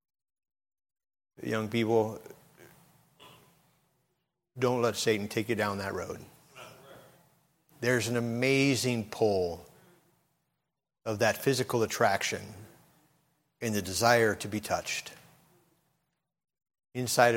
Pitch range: 120-165 Hz